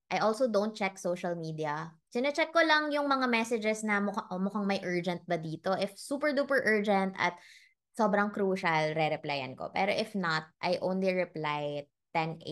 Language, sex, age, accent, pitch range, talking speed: Filipino, female, 20-39, native, 160-205 Hz, 170 wpm